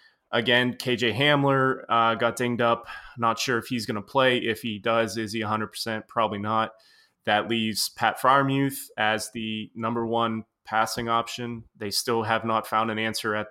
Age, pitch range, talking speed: 20-39, 110-125 Hz, 180 wpm